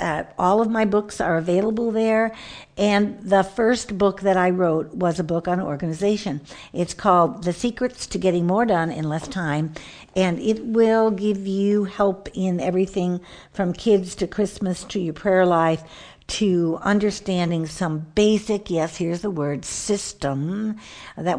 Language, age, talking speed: English, 60-79, 160 wpm